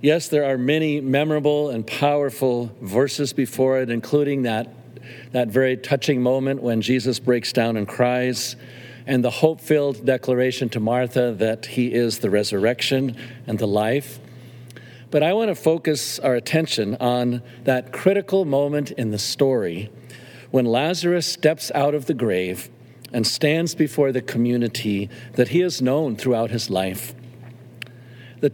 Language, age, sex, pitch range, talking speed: English, 50-69, male, 120-145 Hz, 145 wpm